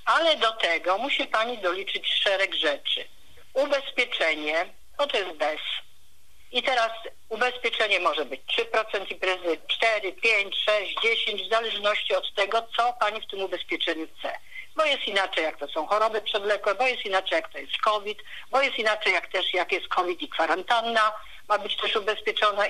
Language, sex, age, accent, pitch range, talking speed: Polish, female, 50-69, native, 180-230 Hz, 165 wpm